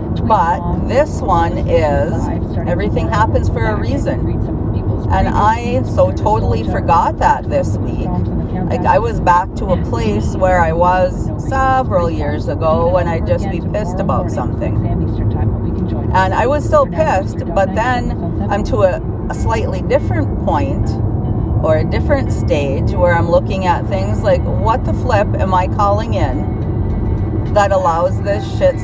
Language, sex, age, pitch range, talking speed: English, female, 40-59, 100-110 Hz, 150 wpm